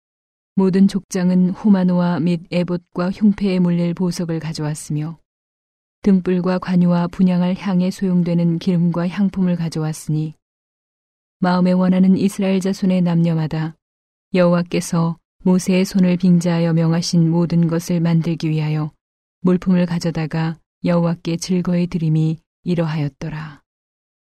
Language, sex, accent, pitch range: Korean, female, native, 165-185 Hz